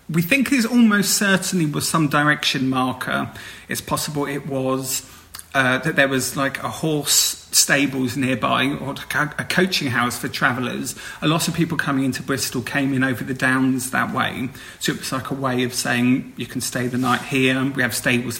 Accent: British